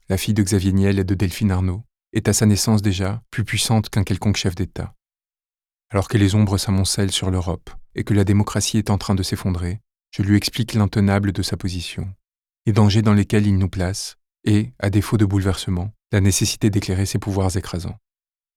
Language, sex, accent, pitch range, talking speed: French, male, French, 95-110 Hz, 195 wpm